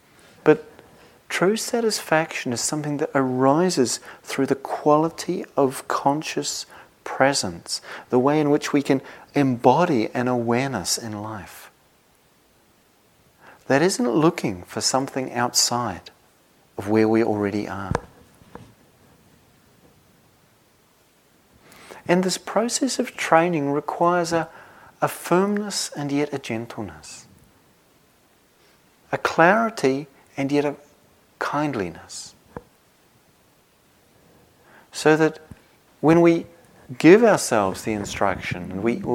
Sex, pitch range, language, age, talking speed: male, 110-150 Hz, English, 40-59, 95 wpm